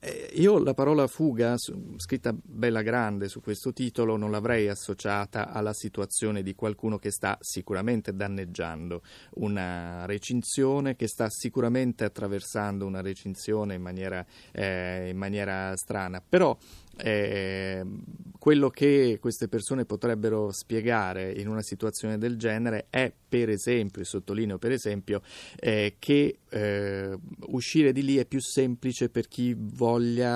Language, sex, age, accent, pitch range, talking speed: Italian, male, 30-49, native, 100-120 Hz, 130 wpm